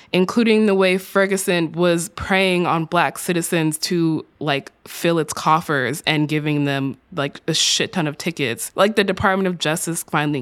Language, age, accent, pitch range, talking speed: English, 20-39, American, 145-180 Hz, 165 wpm